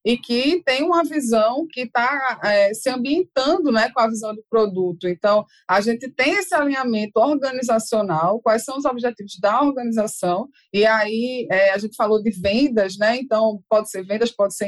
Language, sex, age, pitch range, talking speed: Portuguese, female, 20-39, 215-275 Hz, 180 wpm